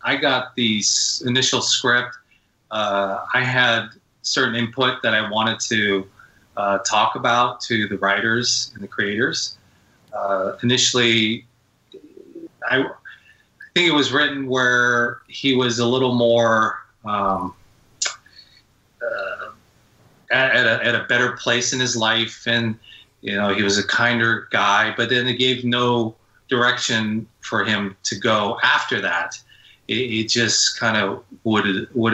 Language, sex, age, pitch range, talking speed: English, male, 30-49, 105-125 Hz, 135 wpm